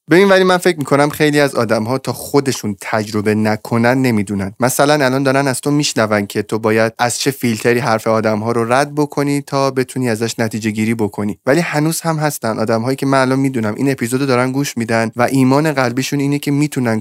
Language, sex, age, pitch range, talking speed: Persian, male, 20-39, 115-145 Hz, 195 wpm